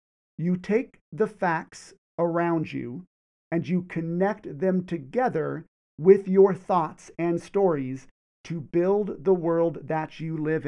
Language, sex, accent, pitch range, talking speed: English, male, American, 155-210 Hz, 130 wpm